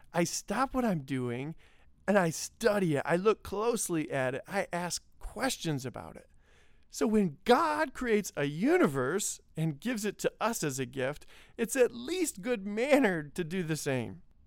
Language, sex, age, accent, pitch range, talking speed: English, male, 40-59, American, 135-190 Hz, 175 wpm